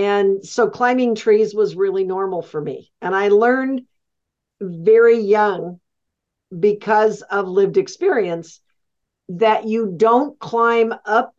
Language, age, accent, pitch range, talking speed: English, 50-69, American, 200-250 Hz, 120 wpm